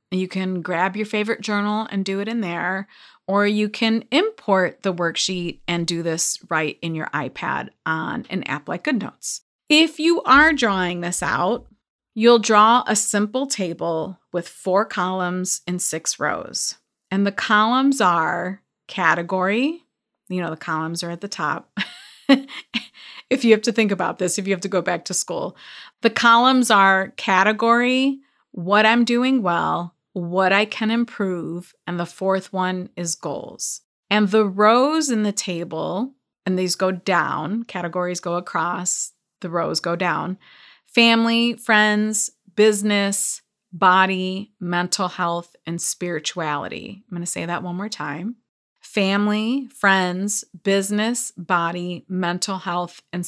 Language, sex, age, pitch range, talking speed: English, female, 30-49, 175-220 Hz, 150 wpm